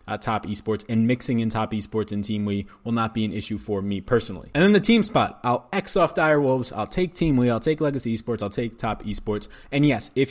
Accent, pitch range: American, 110-140 Hz